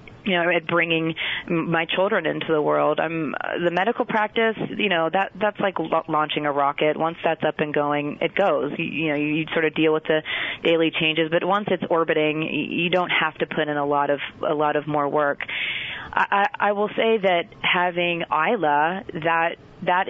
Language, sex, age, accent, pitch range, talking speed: English, female, 30-49, American, 155-170 Hz, 210 wpm